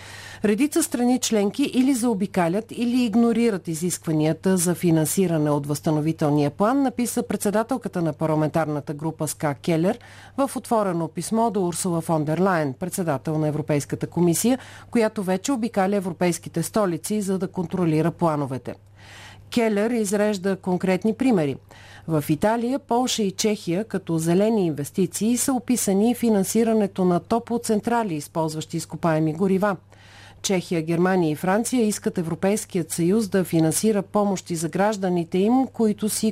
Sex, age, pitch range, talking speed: female, 40-59, 160-215 Hz, 125 wpm